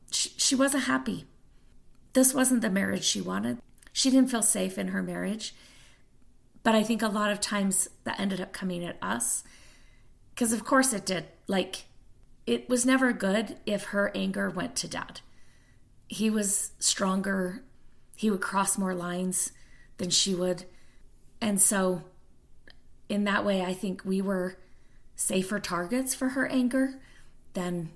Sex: female